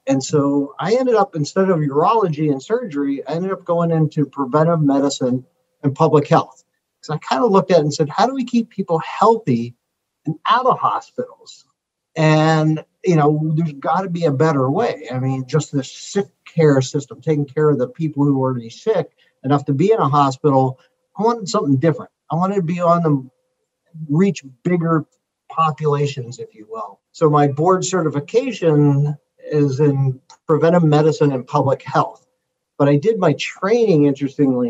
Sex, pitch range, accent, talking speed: male, 140-165 Hz, American, 180 wpm